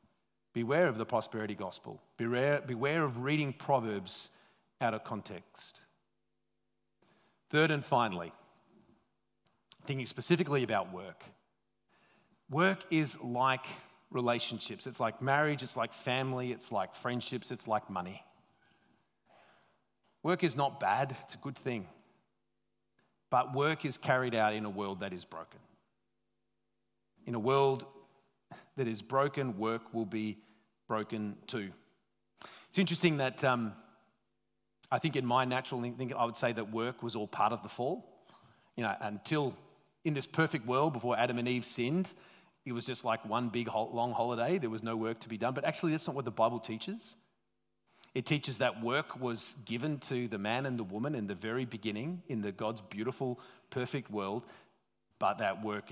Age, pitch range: 40-59, 110-140 Hz